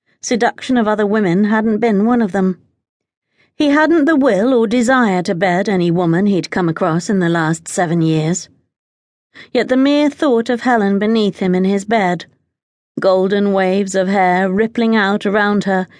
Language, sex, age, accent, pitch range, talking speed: English, female, 40-59, British, 180-230 Hz, 175 wpm